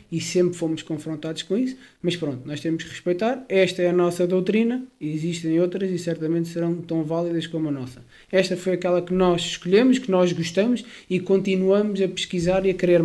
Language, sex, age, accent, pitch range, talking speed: Portuguese, male, 20-39, Portuguese, 175-245 Hz, 200 wpm